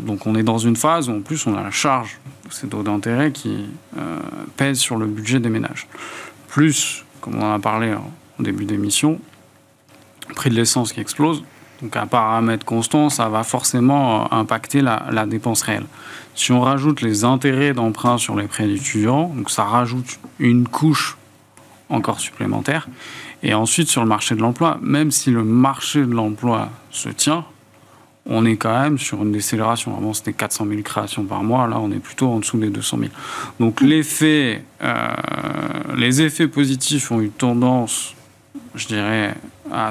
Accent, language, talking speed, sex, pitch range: French, French, 180 wpm, male, 110-140 Hz